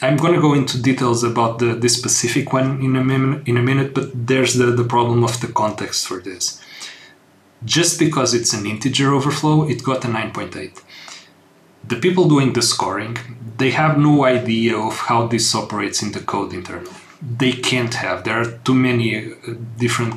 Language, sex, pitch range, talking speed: English, male, 115-130 Hz, 175 wpm